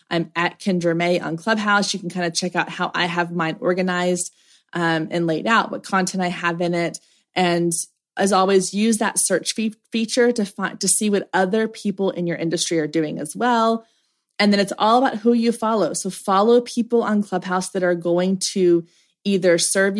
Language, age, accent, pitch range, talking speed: English, 20-39, American, 175-215 Hz, 200 wpm